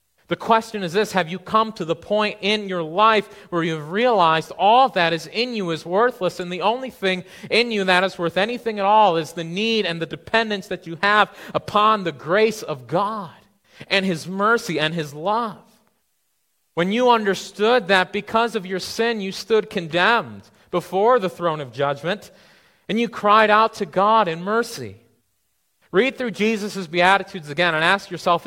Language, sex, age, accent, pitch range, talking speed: English, male, 30-49, American, 120-195 Hz, 185 wpm